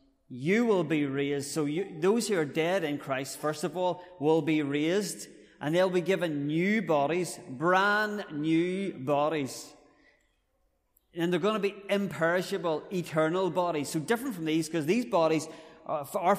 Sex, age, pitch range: male, 30-49, 140-180 Hz